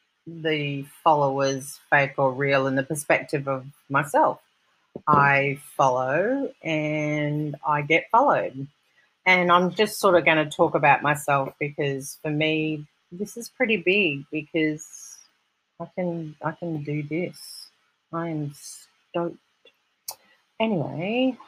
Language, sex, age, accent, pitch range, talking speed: English, female, 40-59, Australian, 135-160 Hz, 120 wpm